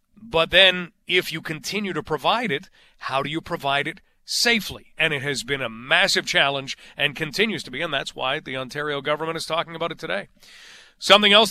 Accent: American